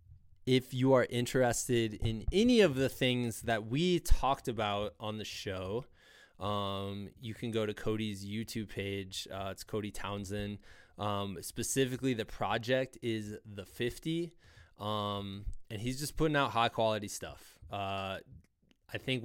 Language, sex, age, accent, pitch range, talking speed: English, male, 20-39, American, 105-130 Hz, 145 wpm